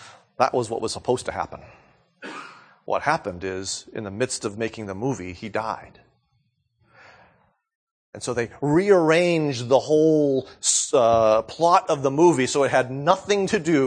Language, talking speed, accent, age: English, 155 wpm, American, 30-49